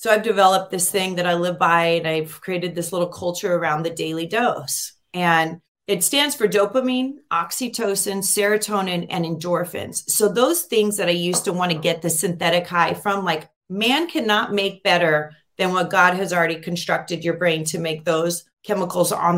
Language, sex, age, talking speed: English, female, 30-49, 185 wpm